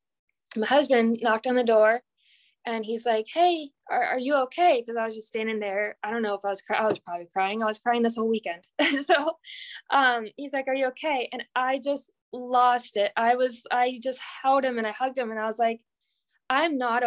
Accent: American